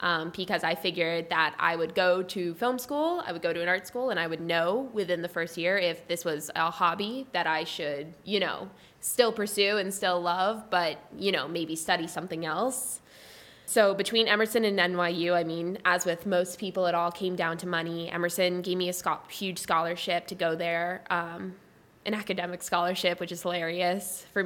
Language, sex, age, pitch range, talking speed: English, female, 10-29, 170-200 Hz, 200 wpm